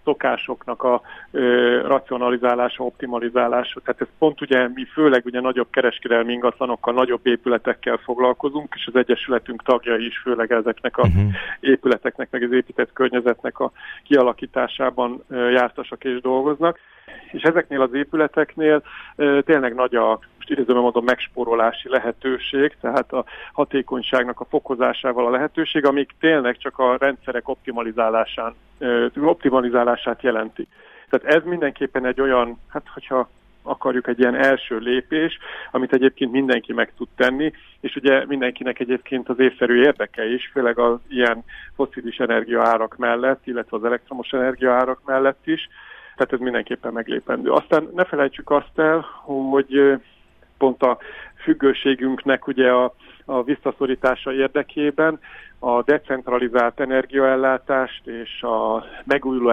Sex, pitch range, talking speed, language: male, 120-135 Hz, 130 wpm, Hungarian